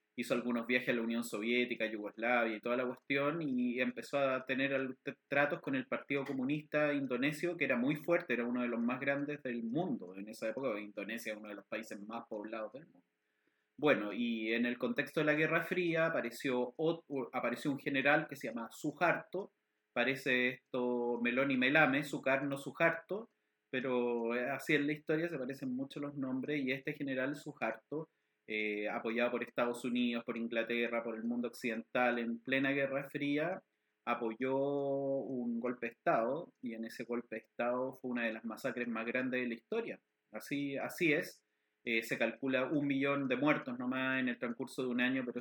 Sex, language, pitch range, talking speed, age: male, Spanish, 120-150 Hz, 185 wpm, 30-49